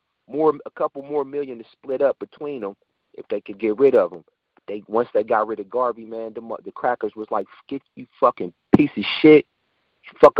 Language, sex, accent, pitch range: Japanese, male, American, 140-225 Hz